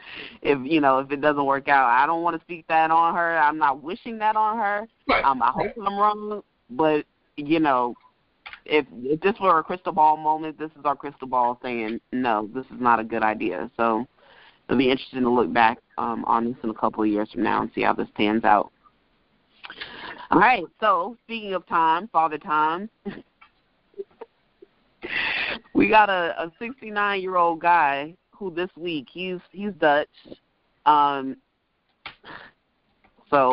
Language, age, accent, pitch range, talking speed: English, 20-39, American, 145-205 Hz, 175 wpm